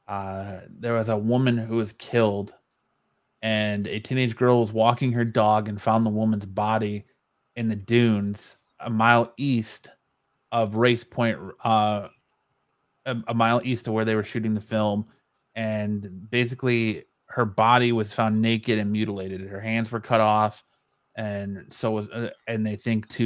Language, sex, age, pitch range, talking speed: English, male, 30-49, 105-115 Hz, 165 wpm